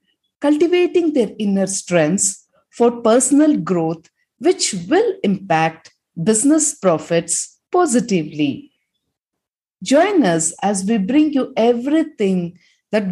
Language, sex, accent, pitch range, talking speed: English, female, Indian, 165-255 Hz, 95 wpm